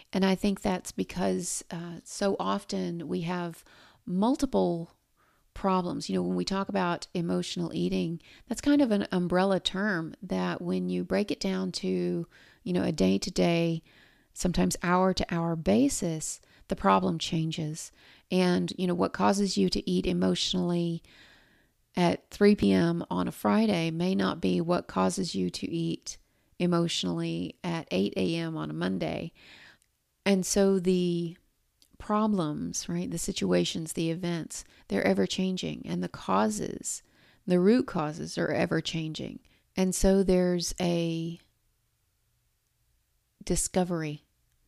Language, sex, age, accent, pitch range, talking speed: English, female, 40-59, American, 145-185 Hz, 130 wpm